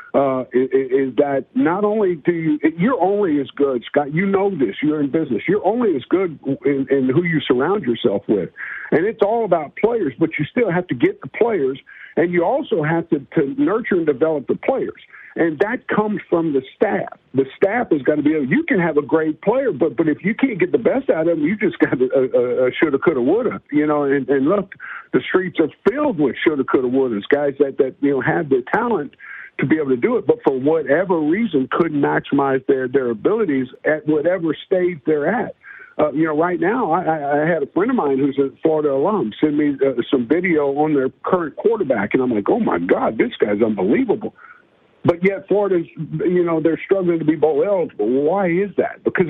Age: 50-69